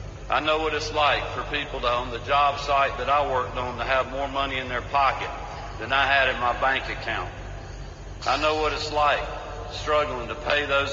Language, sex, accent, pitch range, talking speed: English, male, American, 120-150 Hz, 215 wpm